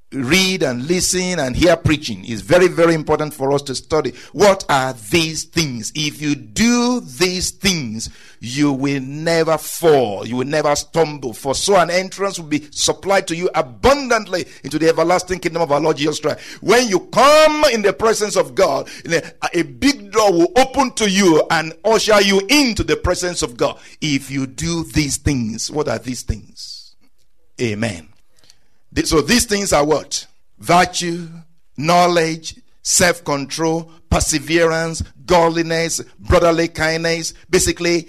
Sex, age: male, 50-69